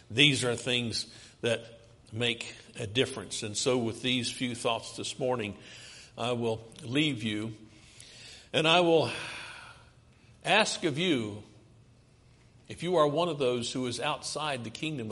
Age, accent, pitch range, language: 60-79, American, 115-130 Hz, English